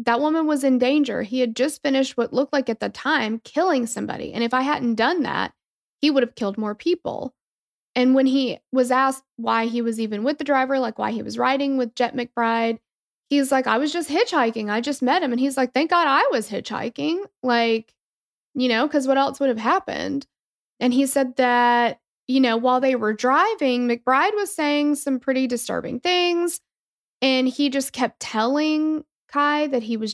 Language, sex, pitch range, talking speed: English, female, 230-280 Hz, 205 wpm